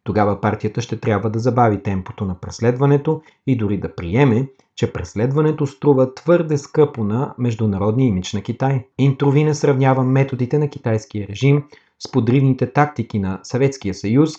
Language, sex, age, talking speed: Bulgarian, male, 30-49, 140 wpm